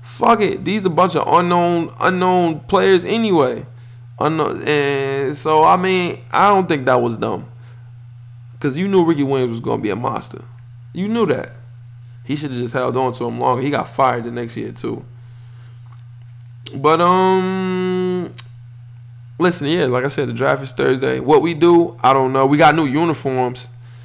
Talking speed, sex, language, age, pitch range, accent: 180 wpm, male, English, 20-39, 120-165 Hz, American